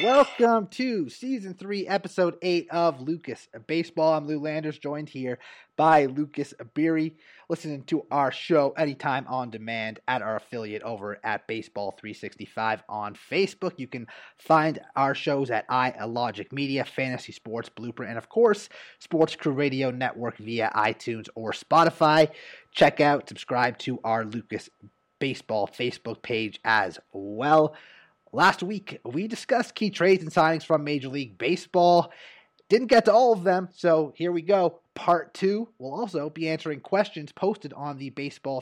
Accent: American